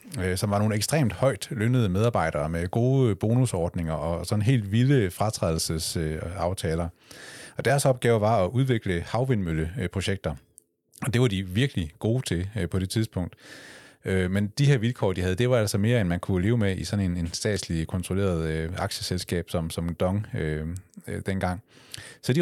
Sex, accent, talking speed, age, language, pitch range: male, native, 155 wpm, 30-49, Danish, 85-115 Hz